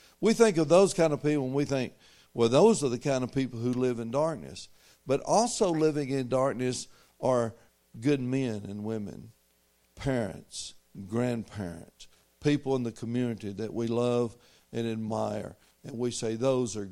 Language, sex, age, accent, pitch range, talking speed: English, male, 60-79, American, 100-135 Hz, 165 wpm